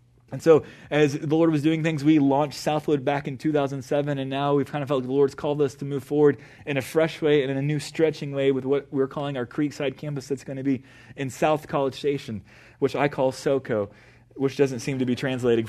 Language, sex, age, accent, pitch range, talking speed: English, male, 20-39, American, 130-155 Hz, 235 wpm